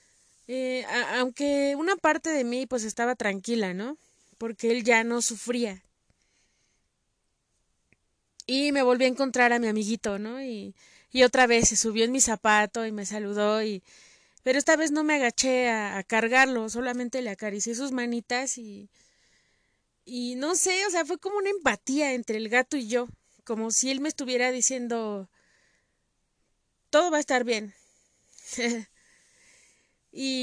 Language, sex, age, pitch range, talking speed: Spanish, female, 20-39, 220-265 Hz, 155 wpm